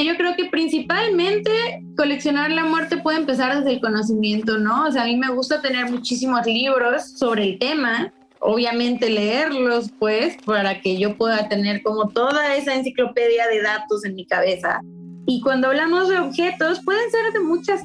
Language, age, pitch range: Spanish, 20-39, 220-290 Hz